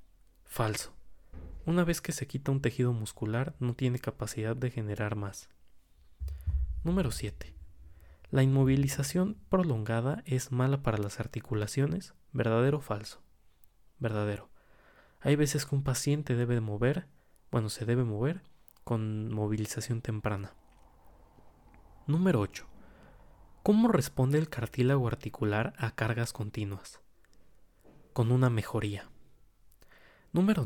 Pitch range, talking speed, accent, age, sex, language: 105-140 Hz, 110 wpm, Mexican, 20-39, male, Spanish